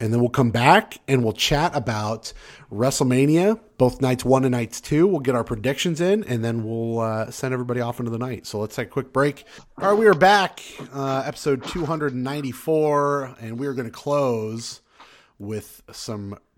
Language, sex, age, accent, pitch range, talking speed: English, male, 30-49, American, 115-150 Hz, 190 wpm